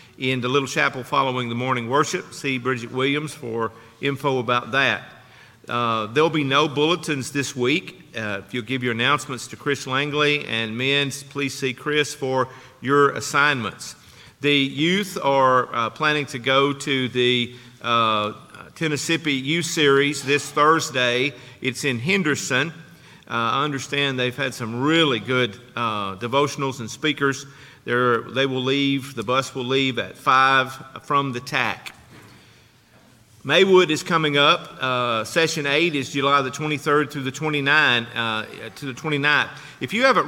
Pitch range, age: 125-150 Hz, 50-69